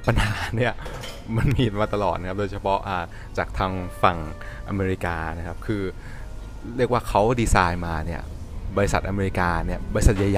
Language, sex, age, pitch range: Thai, male, 20-39, 90-110 Hz